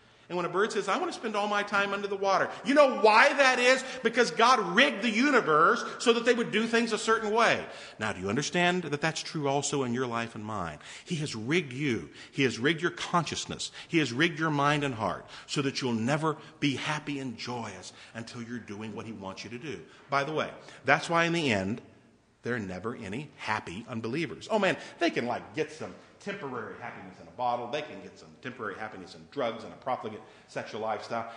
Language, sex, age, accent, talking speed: English, male, 50-69, American, 230 wpm